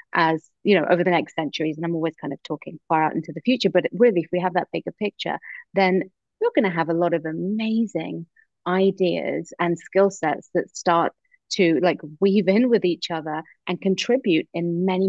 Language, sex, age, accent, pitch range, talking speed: English, female, 30-49, British, 160-195 Hz, 205 wpm